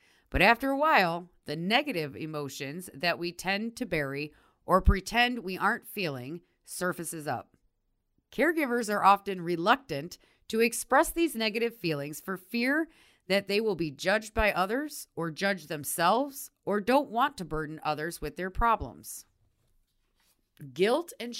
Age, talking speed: 30-49, 145 wpm